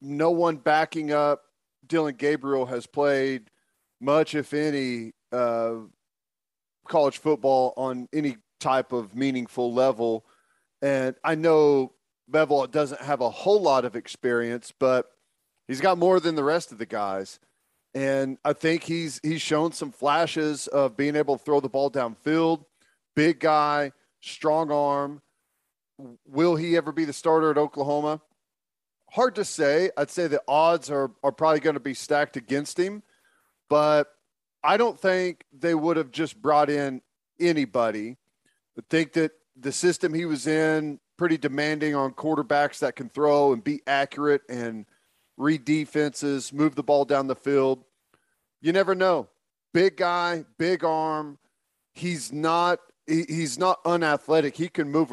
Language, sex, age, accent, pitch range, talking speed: English, male, 40-59, American, 135-160 Hz, 150 wpm